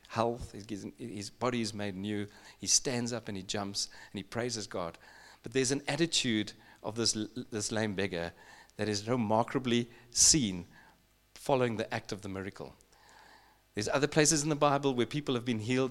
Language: English